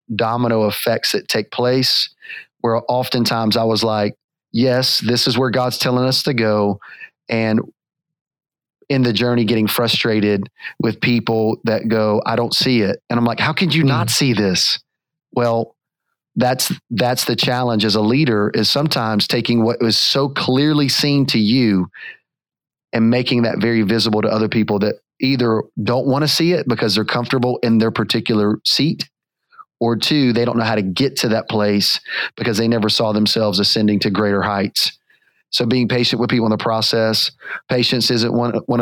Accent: American